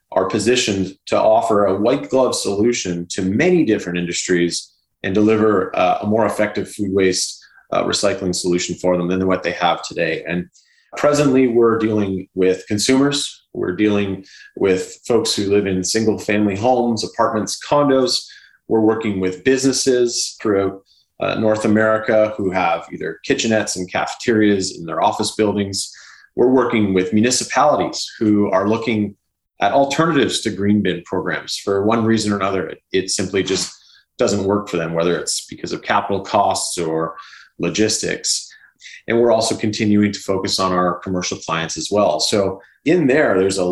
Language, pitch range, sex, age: English, 95-110 Hz, male, 30-49